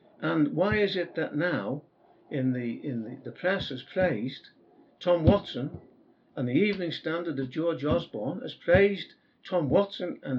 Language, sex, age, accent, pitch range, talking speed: English, male, 60-79, British, 135-185 Hz, 160 wpm